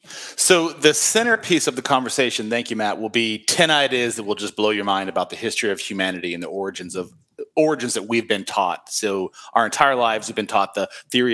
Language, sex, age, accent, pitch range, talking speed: English, male, 30-49, American, 100-150 Hz, 220 wpm